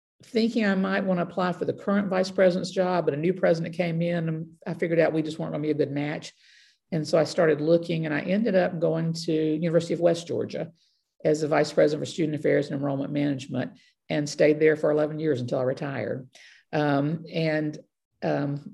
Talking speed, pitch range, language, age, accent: 210 wpm, 150-170 Hz, English, 50-69, American